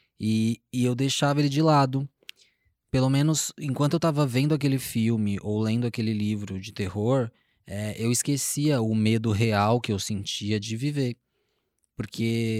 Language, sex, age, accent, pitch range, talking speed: Portuguese, male, 20-39, Brazilian, 105-125 Hz, 155 wpm